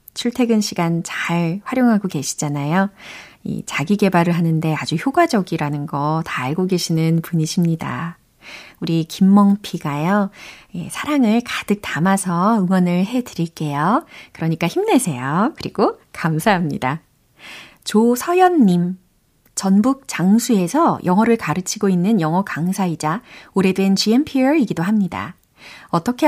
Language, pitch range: Korean, 170-245 Hz